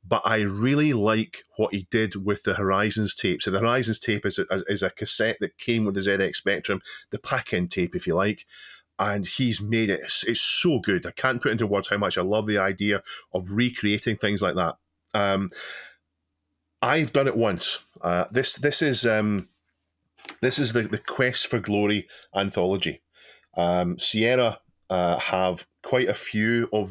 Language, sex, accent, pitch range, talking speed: English, male, British, 95-115 Hz, 185 wpm